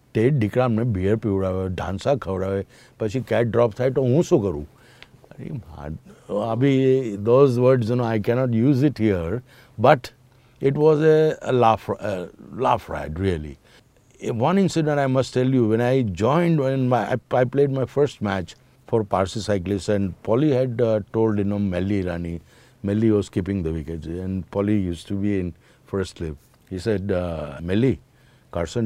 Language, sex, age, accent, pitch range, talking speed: English, male, 60-79, Indian, 100-130 Hz, 155 wpm